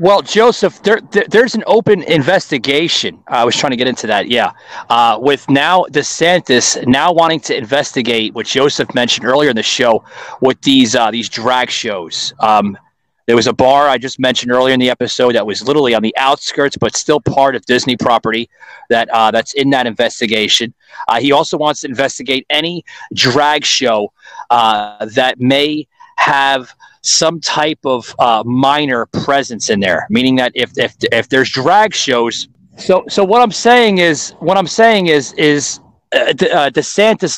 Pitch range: 120-165 Hz